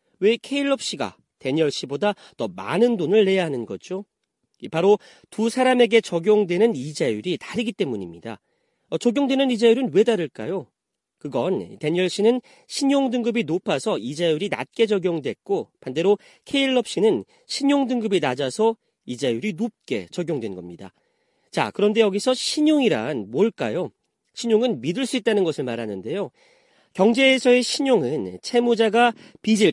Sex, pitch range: male, 185-250 Hz